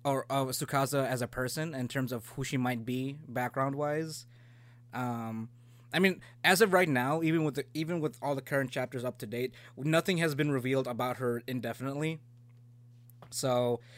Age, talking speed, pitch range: 20-39, 180 wpm, 120-150 Hz